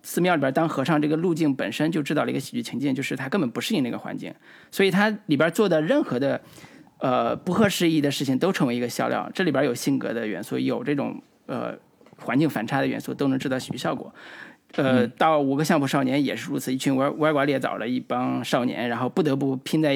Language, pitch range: Chinese, 135-180 Hz